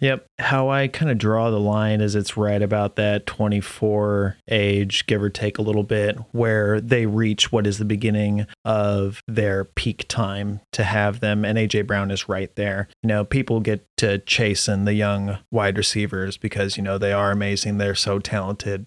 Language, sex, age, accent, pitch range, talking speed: English, male, 30-49, American, 100-115 Hz, 195 wpm